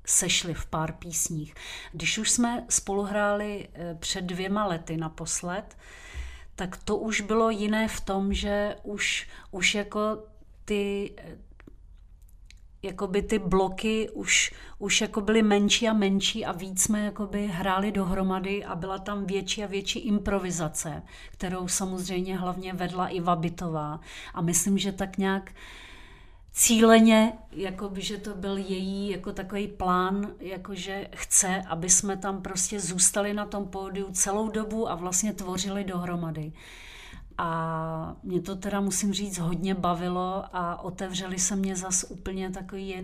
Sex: female